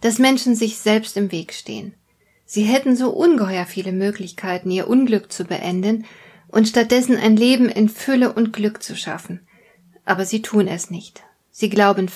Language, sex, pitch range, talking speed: German, female, 195-245 Hz, 170 wpm